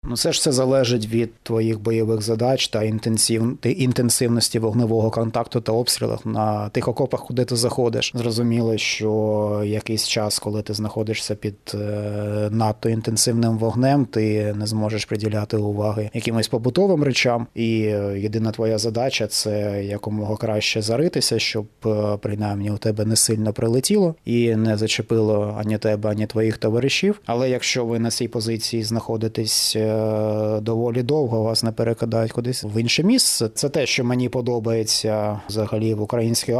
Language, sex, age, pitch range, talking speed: Ukrainian, male, 20-39, 110-120 Hz, 145 wpm